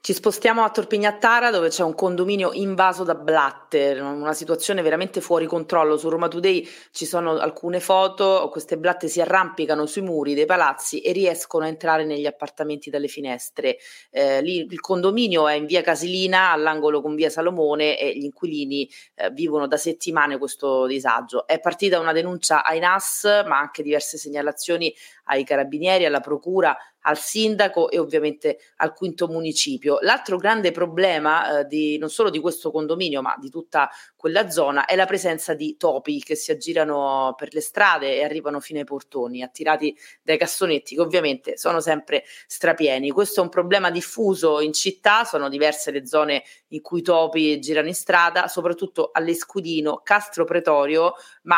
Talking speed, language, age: 165 wpm, Italian, 30-49